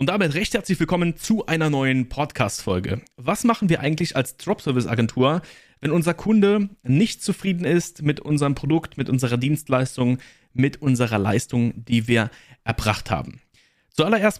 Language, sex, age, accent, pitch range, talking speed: German, male, 30-49, German, 125-160 Hz, 145 wpm